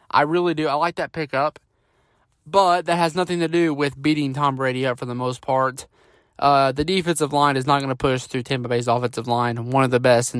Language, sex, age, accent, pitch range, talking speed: English, male, 20-39, American, 120-150 Hz, 235 wpm